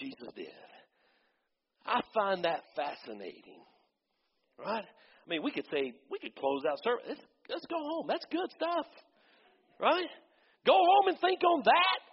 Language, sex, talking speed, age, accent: English, male, 150 wpm, 50-69, American